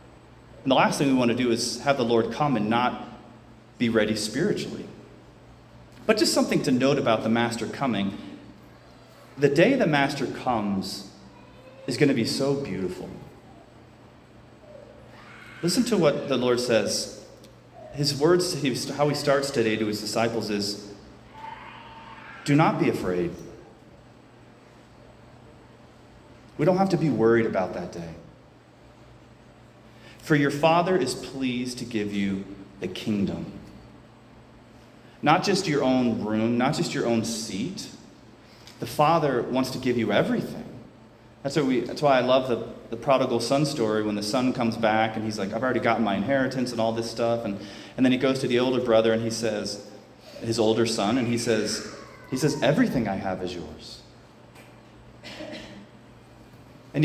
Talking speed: 155 wpm